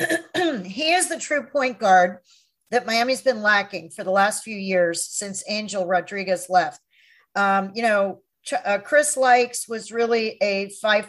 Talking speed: 160 wpm